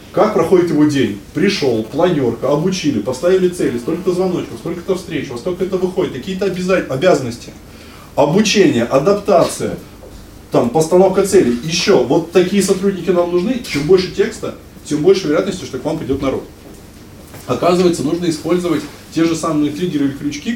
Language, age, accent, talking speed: Russian, 20-39, native, 145 wpm